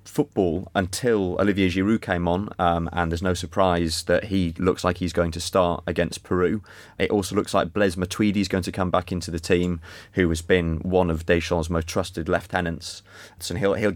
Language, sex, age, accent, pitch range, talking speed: English, male, 20-39, British, 85-100 Hz, 200 wpm